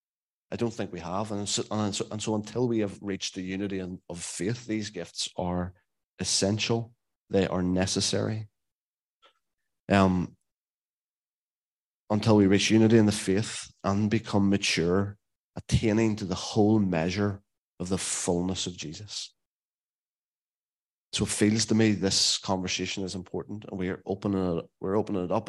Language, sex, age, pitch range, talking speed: English, male, 30-49, 95-110 Hz, 155 wpm